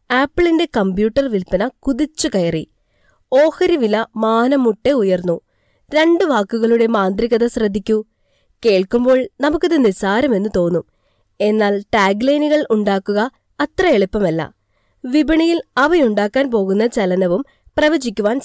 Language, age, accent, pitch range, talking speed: Malayalam, 20-39, native, 200-285 Hz, 90 wpm